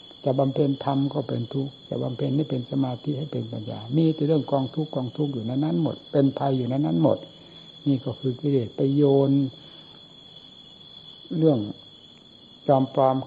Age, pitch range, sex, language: 60-79, 120-150 Hz, male, Thai